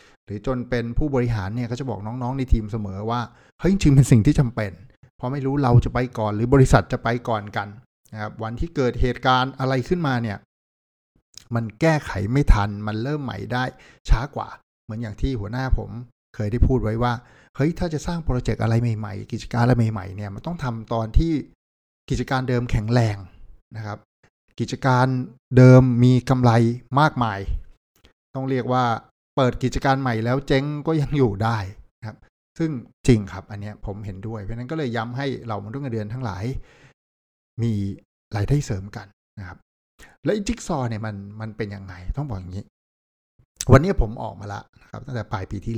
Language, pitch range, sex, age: Thai, 105-130 Hz, male, 60-79